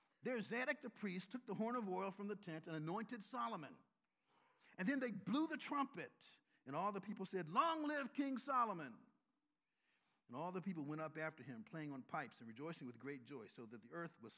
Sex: male